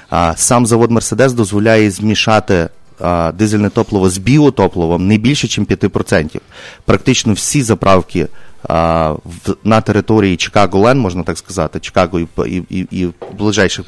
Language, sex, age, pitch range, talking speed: English, male, 30-49, 95-115 Hz, 130 wpm